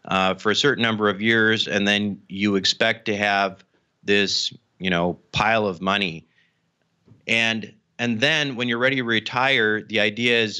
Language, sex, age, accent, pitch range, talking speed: English, male, 30-49, American, 100-120 Hz, 170 wpm